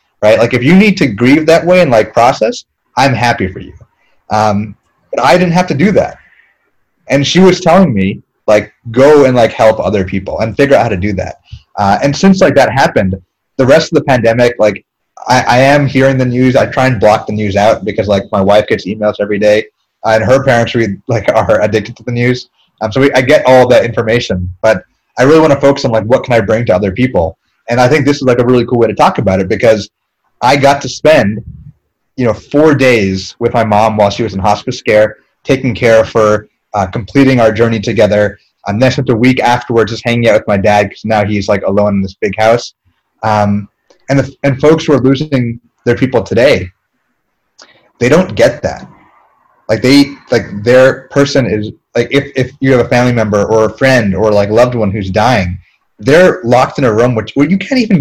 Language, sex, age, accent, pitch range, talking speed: English, male, 30-49, American, 105-135 Hz, 225 wpm